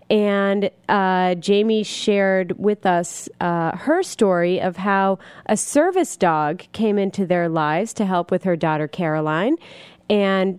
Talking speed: 140 wpm